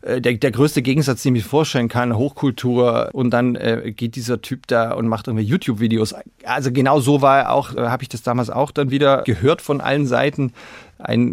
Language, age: German, 30-49